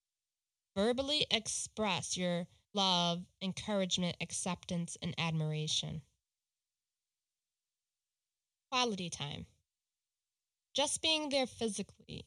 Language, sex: English, female